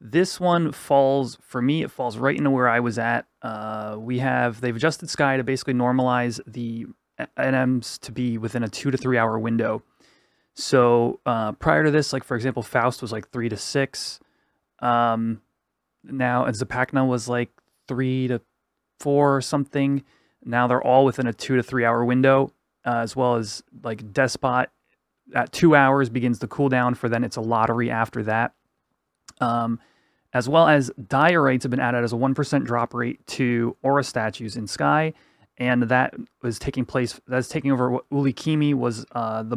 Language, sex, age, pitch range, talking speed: English, male, 30-49, 115-135 Hz, 180 wpm